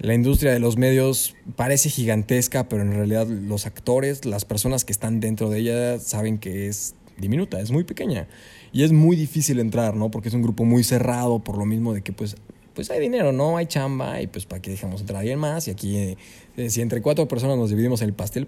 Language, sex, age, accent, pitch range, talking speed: Spanish, male, 20-39, Mexican, 110-150 Hz, 225 wpm